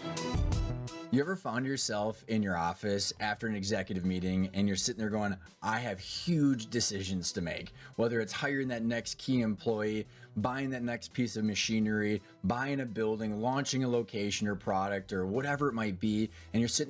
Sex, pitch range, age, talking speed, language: male, 105-135 Hz, 20-39, 180 wpm, English